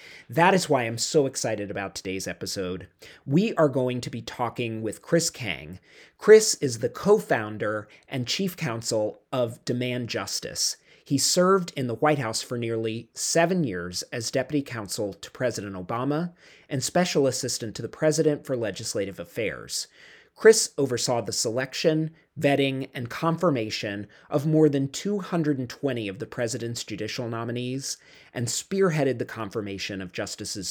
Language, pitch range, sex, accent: English, 115-160 Hz, male, American